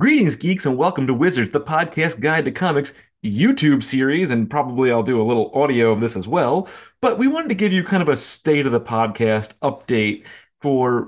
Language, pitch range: English, 130-170 Hz